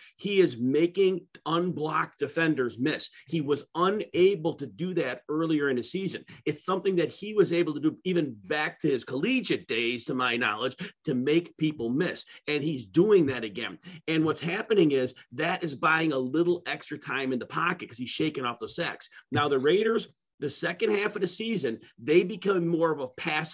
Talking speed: 195 wpm